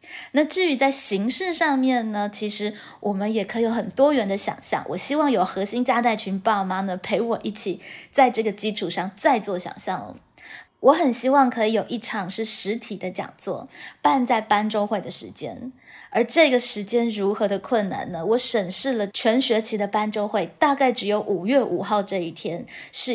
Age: 20-39